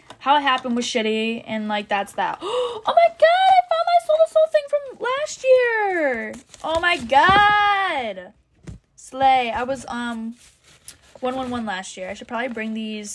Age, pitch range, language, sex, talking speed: 10-29, 205-265 Hz, English, female, 165 wpm